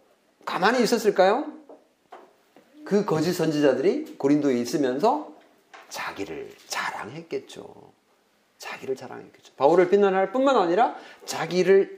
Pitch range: 170-235 Hz